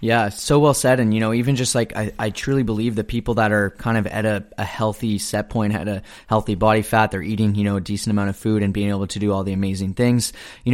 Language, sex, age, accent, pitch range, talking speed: English, male, 20-39, American, 100-120 Hz, 280 wpm